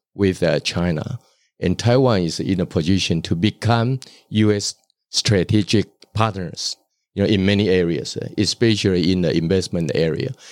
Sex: male